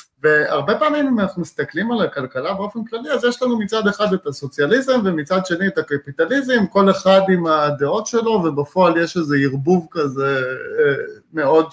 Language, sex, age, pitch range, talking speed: Hebrew, male, 30-49, 165-235 Hz, 155 wpm